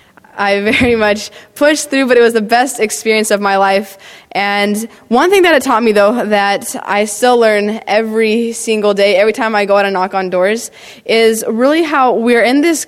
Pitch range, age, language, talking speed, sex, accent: 210-260 Hz, 20-39, English, 205 wpm, female, American